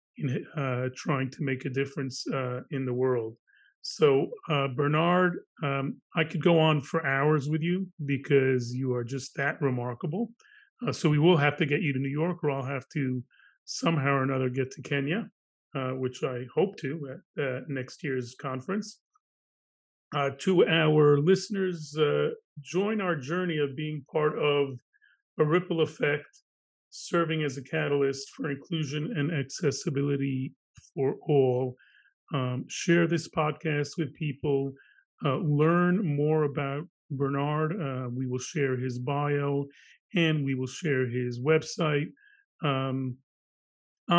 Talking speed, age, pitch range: 150 wpm, 30-49, 135-165 Hz